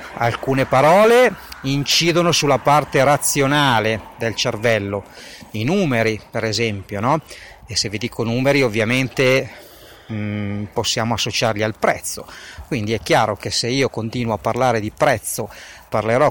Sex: male